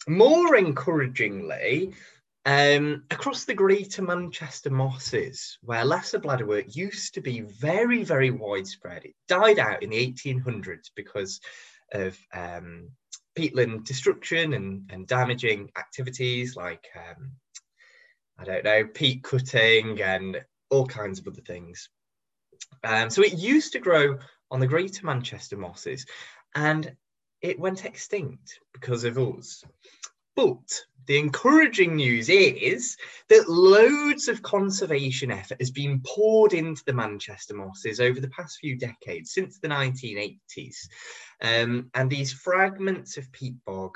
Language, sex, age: English, male, 10-29